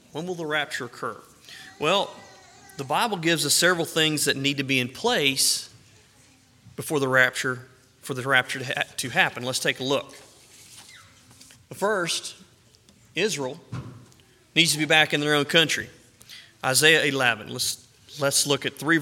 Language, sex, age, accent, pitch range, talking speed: English, male, 30-49, American, 120-145 Hz, 155 wpm